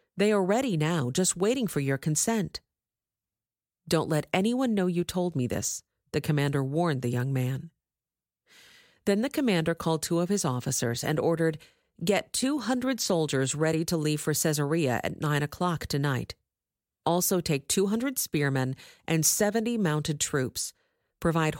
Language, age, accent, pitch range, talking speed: English, 40-59, American, 140-200 Hz, 155 wpm